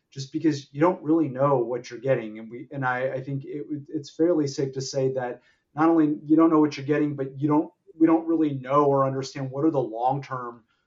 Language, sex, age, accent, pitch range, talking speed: English, male, 30-49, American, 130-155 Hz, 230 wpm